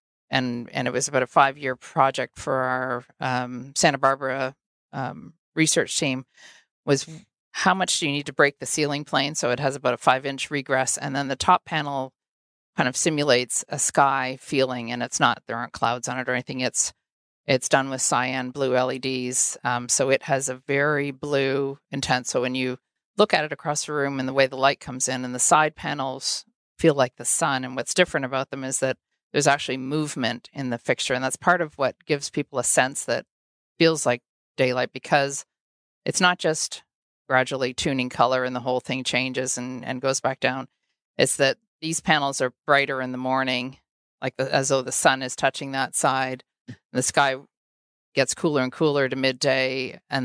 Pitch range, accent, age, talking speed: 130-140 Hz, American, 50-69, 200 wpm